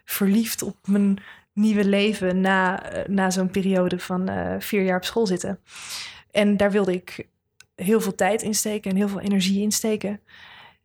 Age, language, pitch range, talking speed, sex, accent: 20-39, Dutch, 180-215 Hz, 170 wpm, female, Dutch